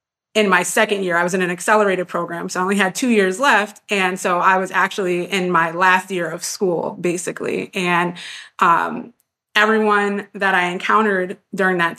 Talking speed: 185 wpm